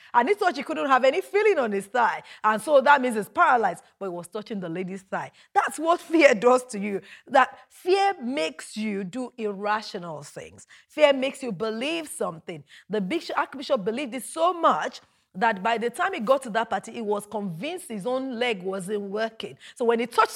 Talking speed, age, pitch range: 205 wpm, 30-49, 195-275 Hz